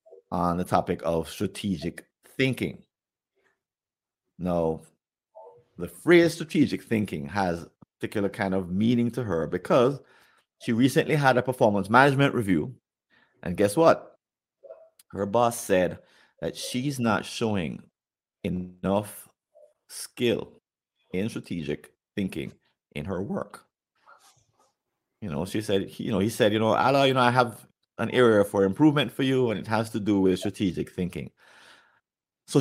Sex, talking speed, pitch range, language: male, 140 wpm, 90-130 Hz, English